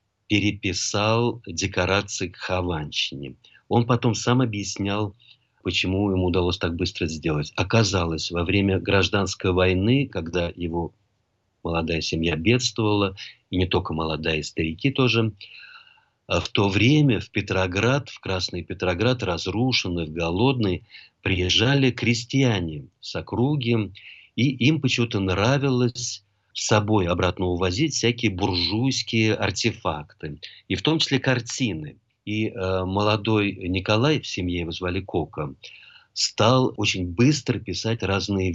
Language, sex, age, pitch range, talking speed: Russian, male, 50-69, 90-115 Hz, 115 wpm